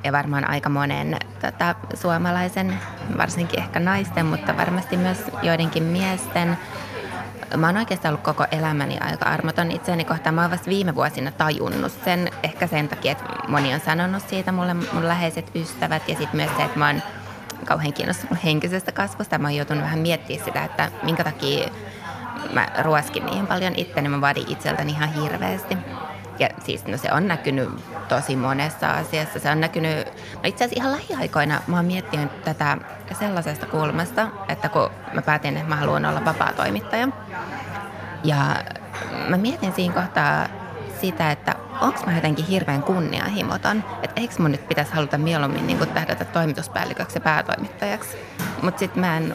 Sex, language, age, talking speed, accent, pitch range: female, Finnish, 20-39, 165 wpm, native, 150-180 Hz